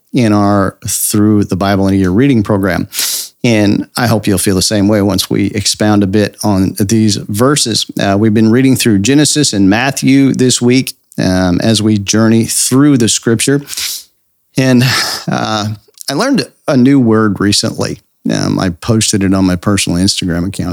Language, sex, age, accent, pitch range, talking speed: English, male, 50-69, American, 100-125 Hz, 175 wpm